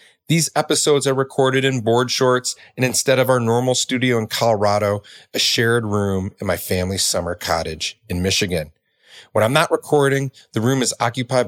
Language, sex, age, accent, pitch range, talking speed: English, male, 30-49, American, 95-130 Hz, 175 wpm